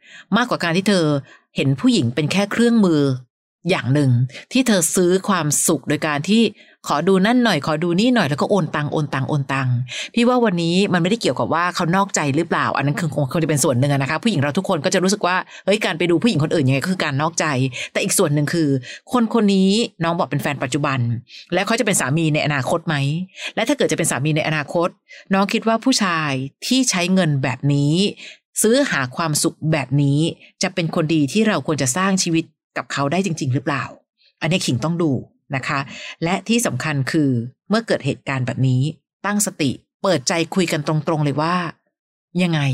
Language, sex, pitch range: Thai, female, 145-195 Hz